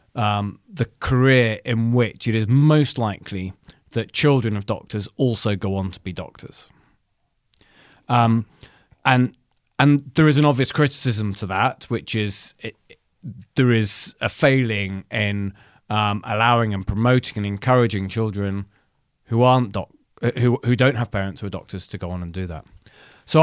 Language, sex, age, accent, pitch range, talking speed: English, male, 30-49, British, 100-130 Hz, 160 wpm